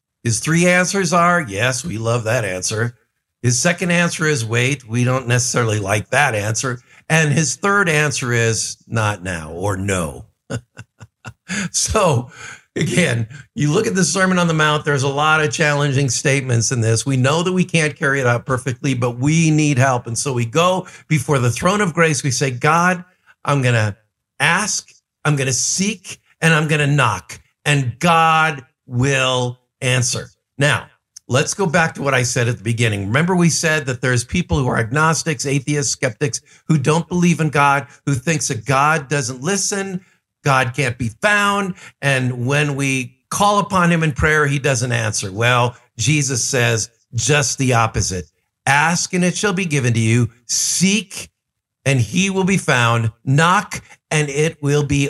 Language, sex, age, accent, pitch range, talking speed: English, male, 50-69, American, 120-160 Hz, 175 wpm